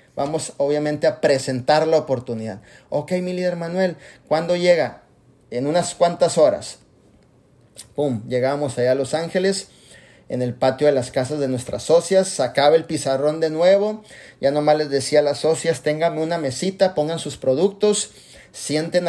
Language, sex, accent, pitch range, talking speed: Spanish, male, Mexican, 135-175 Hz, 155 wpm